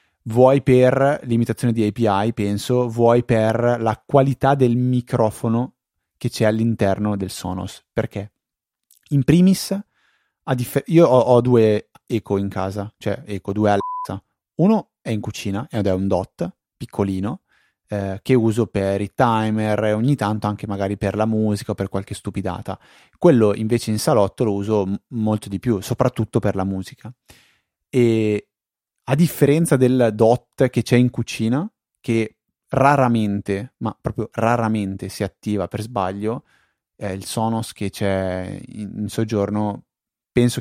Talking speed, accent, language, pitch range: 150 wpm, native, Italian, 100-120 Hz